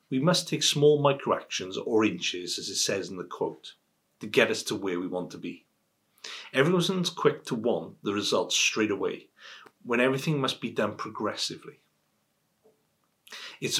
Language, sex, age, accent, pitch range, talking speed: English, male, 40-59, British, 110-150 Hz, 160 wpm